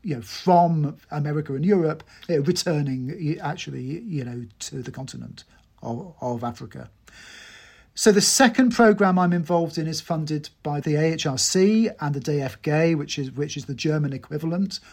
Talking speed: 160 wpm